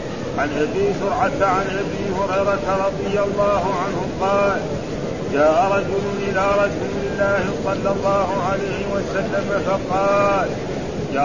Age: 40-59